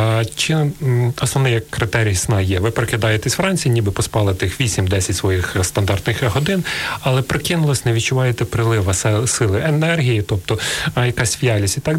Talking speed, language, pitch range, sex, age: 130 wpm, Ukrainian, 100-130 Hz, male, 30-49